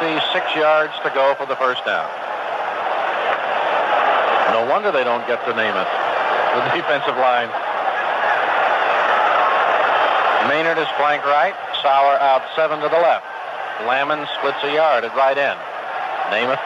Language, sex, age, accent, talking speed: English, male, 60-79, American, 130 wpm